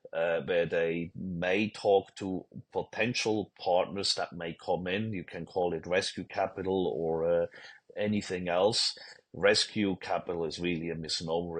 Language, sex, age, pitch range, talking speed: English, male, 40-59, 80-95 Hz, 145 wpm